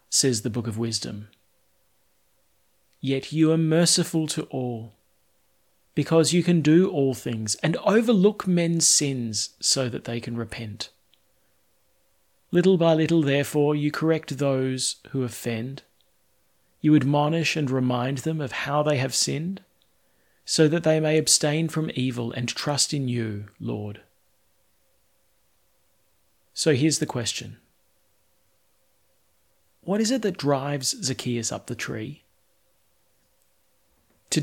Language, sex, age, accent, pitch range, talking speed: English, male, 40-59, Australian, 120-165 Hz, 125 wpm